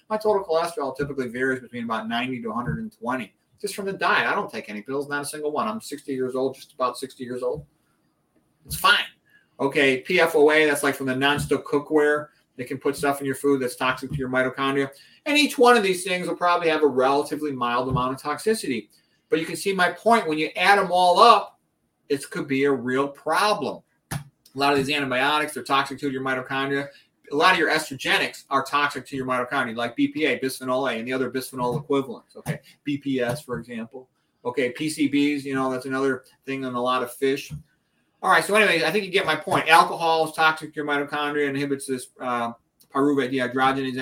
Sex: male